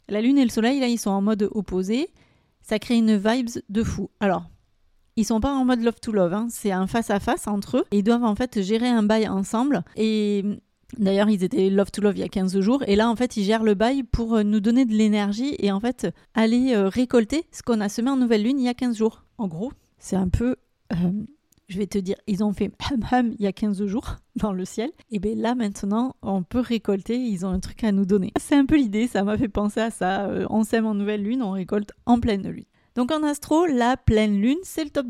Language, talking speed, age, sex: French, 255 wpm, 30-49, female